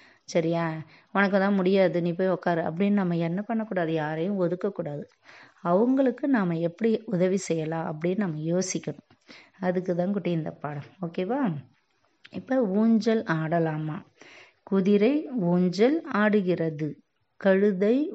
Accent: native